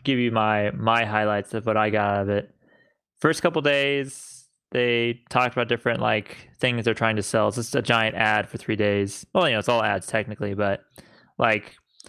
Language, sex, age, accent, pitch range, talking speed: English, male, 20-39, American, 110-140 Hz, 210 wpm